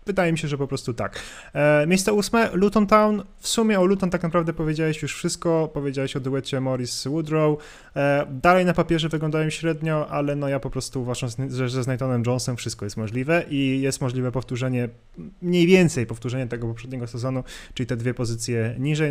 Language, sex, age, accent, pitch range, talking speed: Polish, male, 20-39, native, 115-145 Hz, 180 wpm